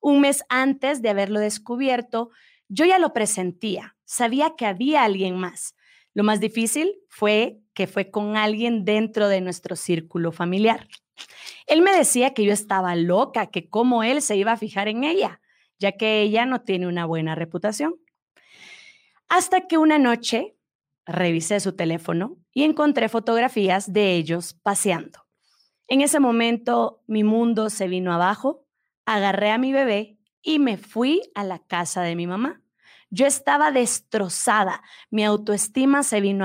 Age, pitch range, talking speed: 30-49, 195-270 Hz, 155 wpm